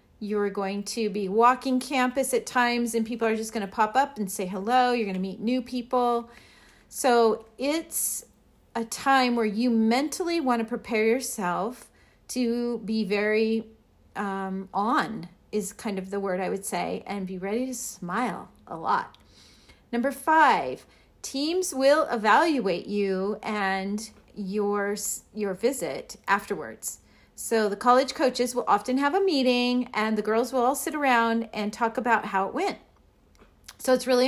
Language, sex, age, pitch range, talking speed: English, female, 40-59, 210-255 Hz, 155 wpm